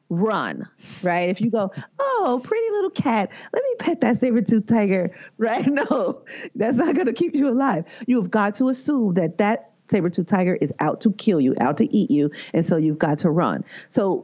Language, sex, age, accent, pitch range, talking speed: English, female, 40-59, American, 165-215 Hz, 210 wpm